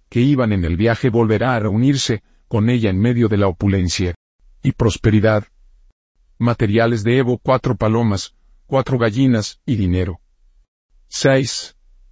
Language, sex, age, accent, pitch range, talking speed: Spanish, male, 50-69, Mexican, 95-130 Hz, 135 wpm